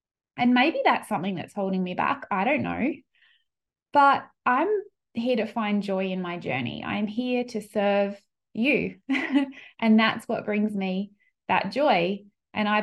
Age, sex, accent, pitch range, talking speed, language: 20-39, female, Australian, 195-240 Hz, 160 wpm, English